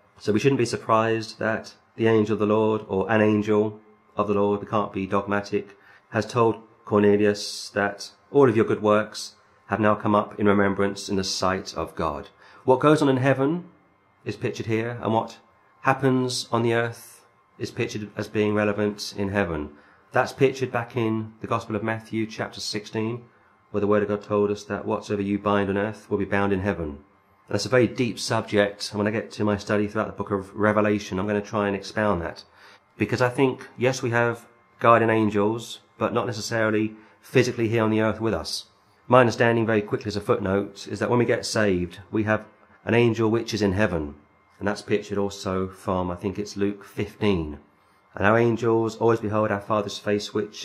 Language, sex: English, male